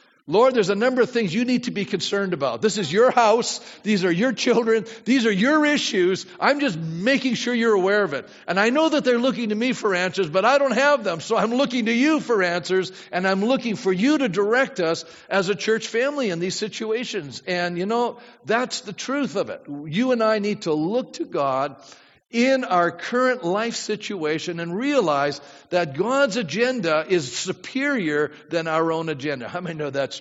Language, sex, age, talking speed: English, male, 50-69, 210 wpm